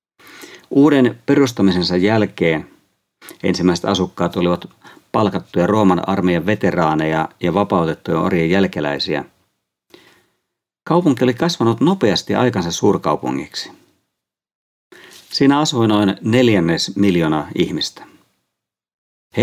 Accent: native